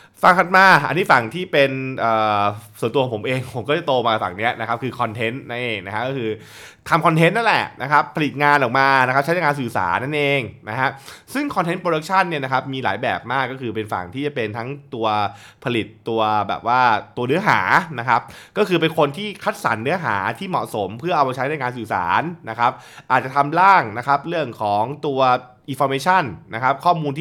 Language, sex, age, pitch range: Thai, male, 20-39, 115-160 Hz